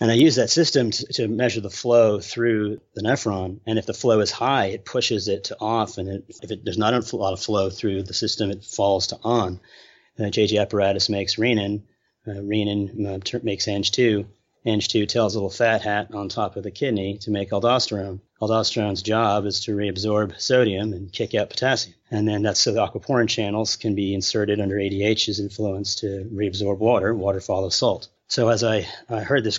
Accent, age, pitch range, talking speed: American, 30-49, 100-115 Hz, 210 wpm